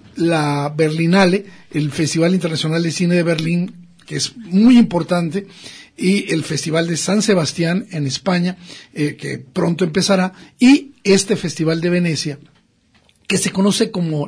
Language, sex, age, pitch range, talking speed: Spanish, male, 50-69, 170-220 Hz, 145 wpm